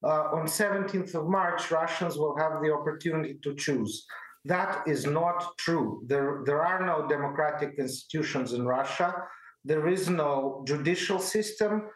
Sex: male